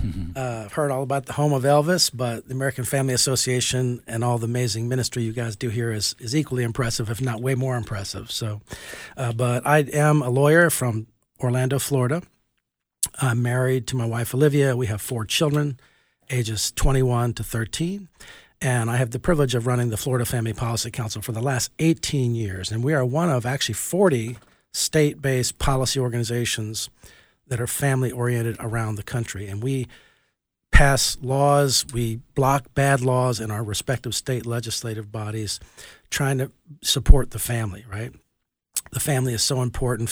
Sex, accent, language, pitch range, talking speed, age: male, American, English, 115-130 Hz, 170 wpm, 50-69